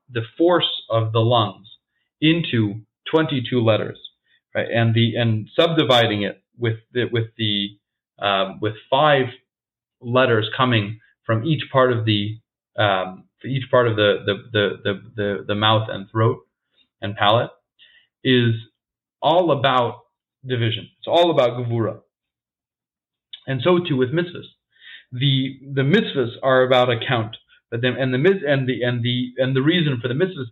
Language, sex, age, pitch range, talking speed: English, male, 30-49, 115-135 Hz, 150 wpm